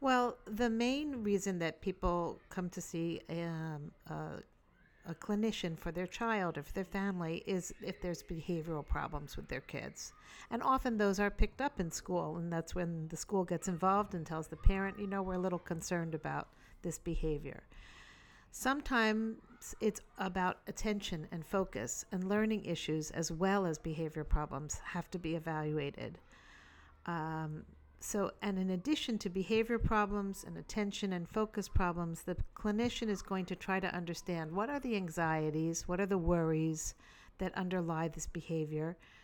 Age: 50-69